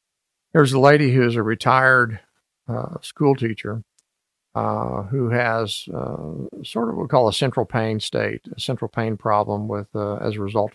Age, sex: 50-69, male